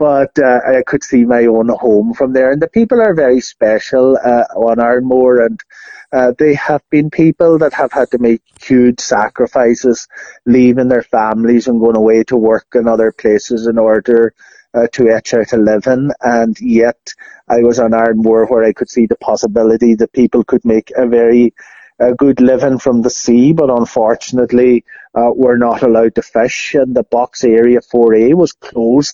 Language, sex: English, male